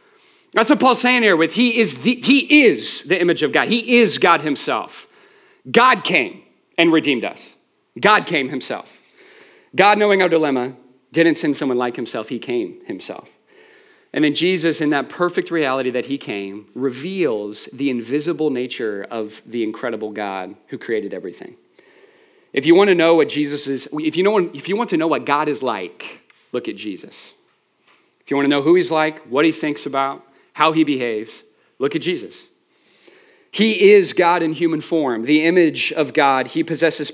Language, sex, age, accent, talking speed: English, male, 40-59, American, 185 wpm